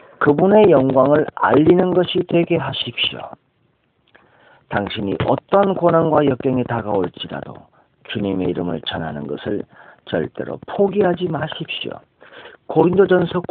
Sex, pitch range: male, 115-170 Hz